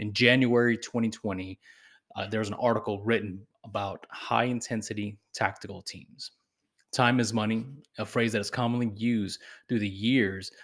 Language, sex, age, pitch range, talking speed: English, male, 20-39, 100-120 Hz, 135 wpm